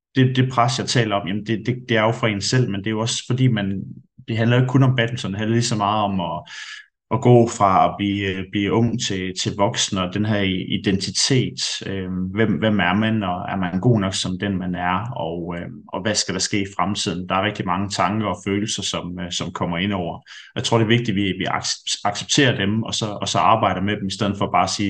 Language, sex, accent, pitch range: Danish, male, native, 95-115 Hz